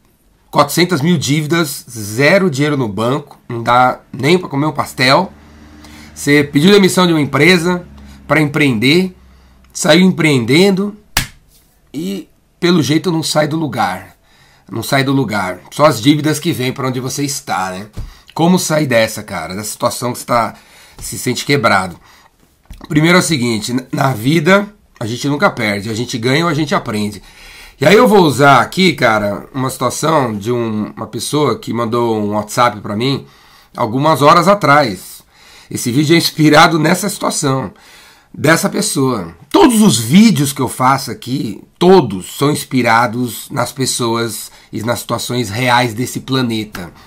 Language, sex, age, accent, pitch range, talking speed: Portuguese, male, 30-49, Brazilian, 115-160 Hz, 155 wpm